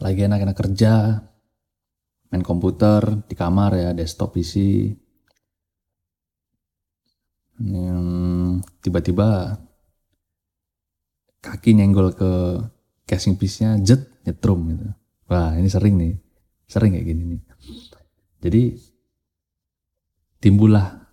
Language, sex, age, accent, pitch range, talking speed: Indonesian, male, 20-39, native, 85-110 Hz, 80 wpm